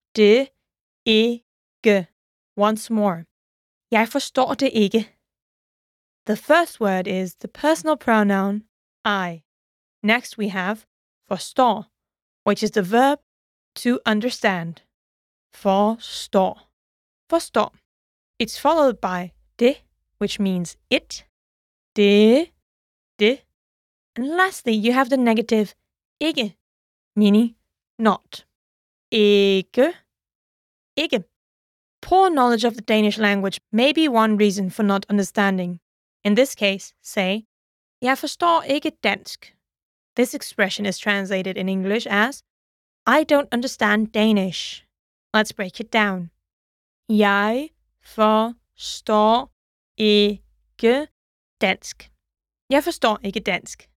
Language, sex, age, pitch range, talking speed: English, female, 20-39, 195-245 Hz, 90 wpm